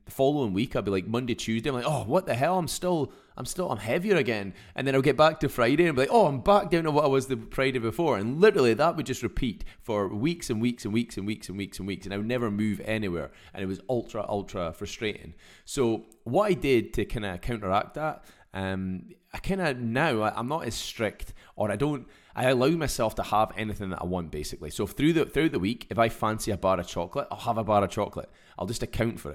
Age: 20-39